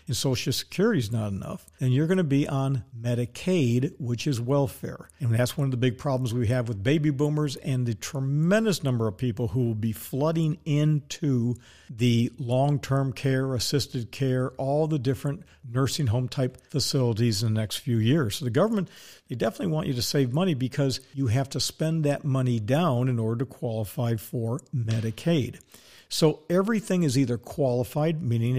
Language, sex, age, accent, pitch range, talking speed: English, male, 50-69, American, 120-150 Hz, 180 wpm